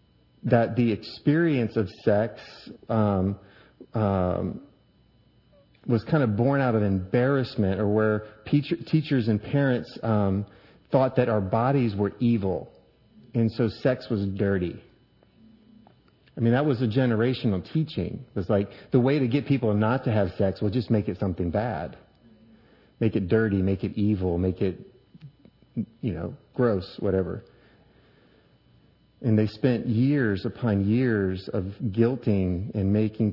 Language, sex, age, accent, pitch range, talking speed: English, male, 30-49, American, 100-120 Hz, 140 wpm